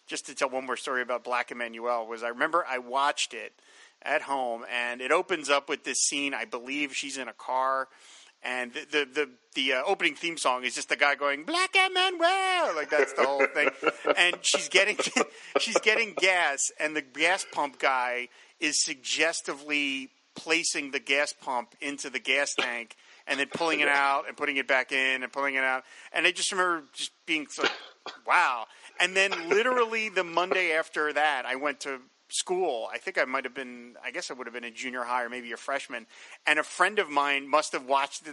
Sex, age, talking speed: male, 40-59, 210 wpm